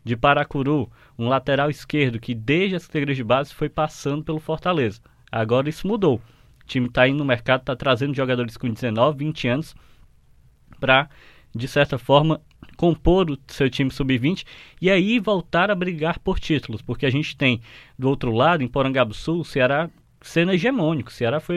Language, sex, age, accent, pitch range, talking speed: Portuguese, male, 20-39, Brazilian, 125-150 Hz, 180 wpm